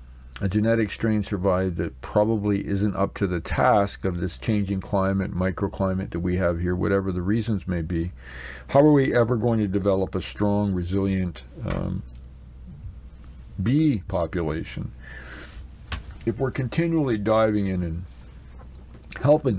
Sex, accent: male, American